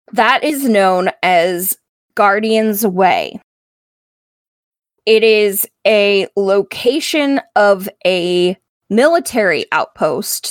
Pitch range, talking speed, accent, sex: 195-245 Hz, 80 wpm, American, female